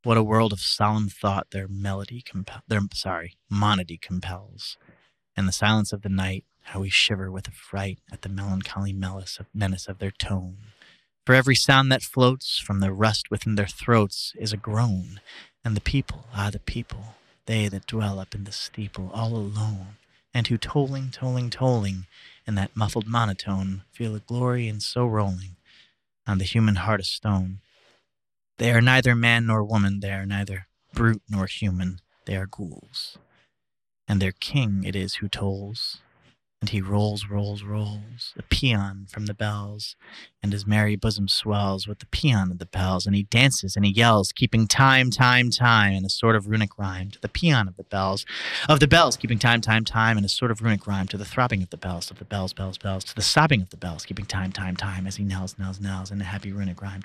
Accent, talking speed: American, 200 wpm